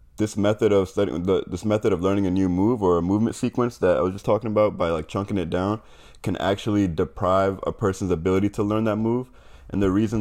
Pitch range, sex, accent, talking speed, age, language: 90-105 Hz, male, American, 230 wpm, 20-39, English